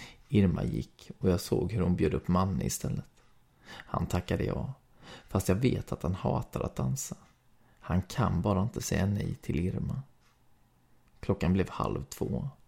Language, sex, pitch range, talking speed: Swedish, male, 95-125 Hz, 160 wpm